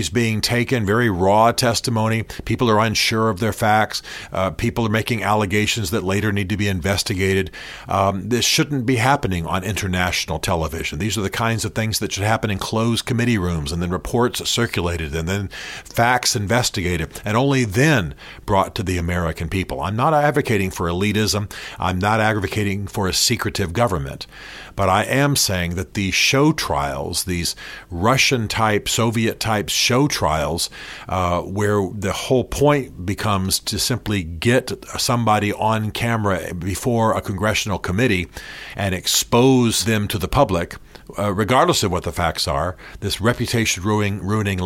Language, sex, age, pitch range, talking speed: English, male, 40-59, 95-115 Hz, 155 wpm